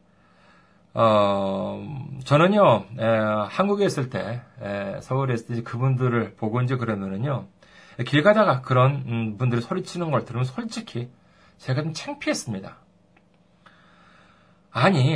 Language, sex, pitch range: Korean, male, 120-190 Hz